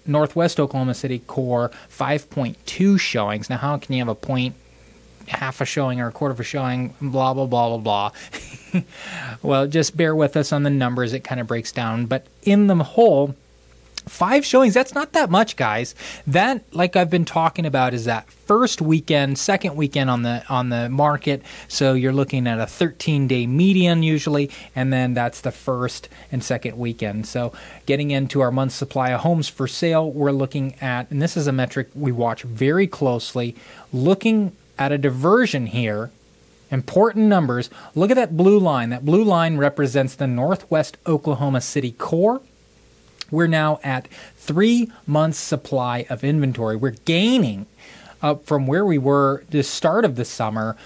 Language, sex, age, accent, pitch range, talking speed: English, male, 20-39, American, 120-155 Hz, 170 wpm